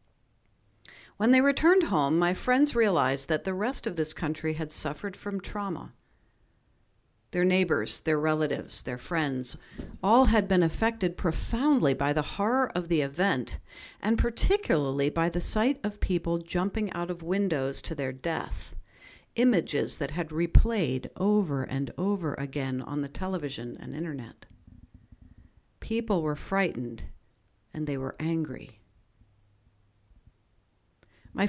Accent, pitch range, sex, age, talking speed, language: American, 125-200 Hz, female, 50-69, 130 wpm, English